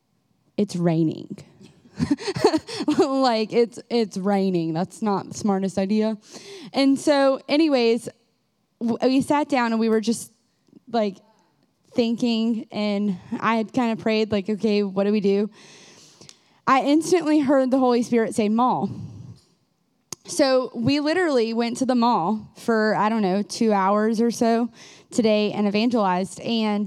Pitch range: 205-245 Hz